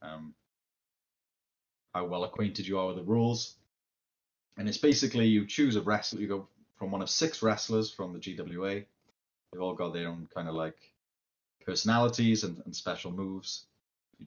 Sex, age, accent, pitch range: male, 30-49, British, 85-105 Hz